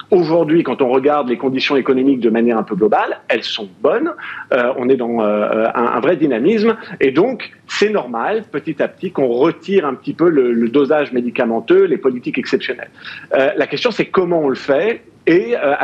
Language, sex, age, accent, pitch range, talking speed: French, male, 50-69, French, 125-195 Hz, 200 wpm